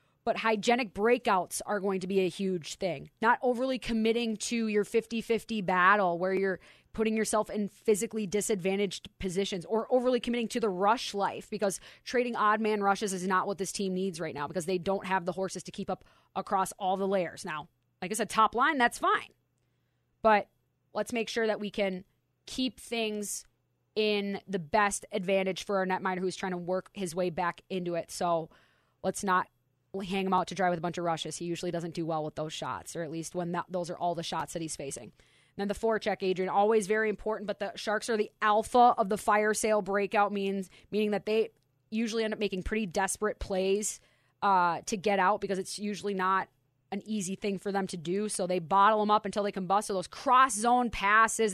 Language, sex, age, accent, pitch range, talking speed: English, female, 20-39, American, 185-215 Hz, 215 wpm